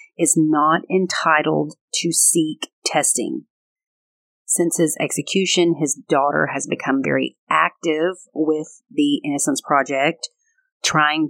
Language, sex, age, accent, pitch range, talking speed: English, female, 30-49, American, 145-200 Hz, 105 wpm